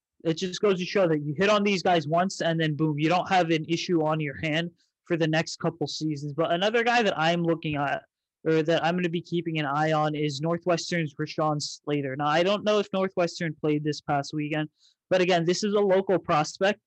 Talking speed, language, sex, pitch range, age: 235 wpm, English, male, 155-185 Hz, 20-39